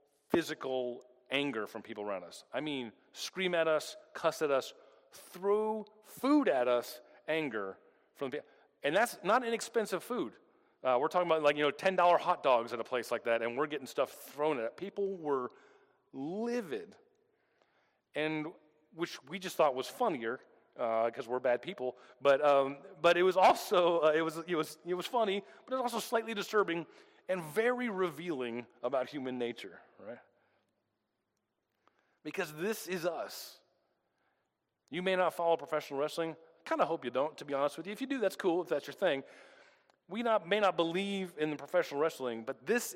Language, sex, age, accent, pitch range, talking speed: English, male, 40-59, American, 135-200 Hz, 185 wpm